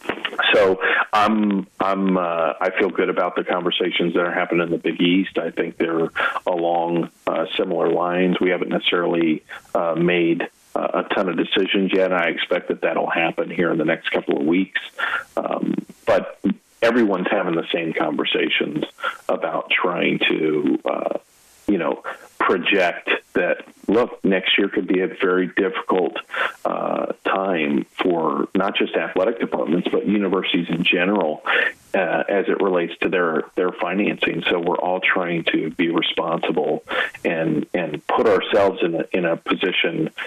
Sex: male